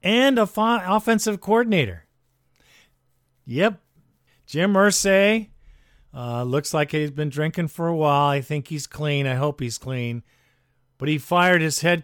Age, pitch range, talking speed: 50-69, 130-170 Hz, 145 wpm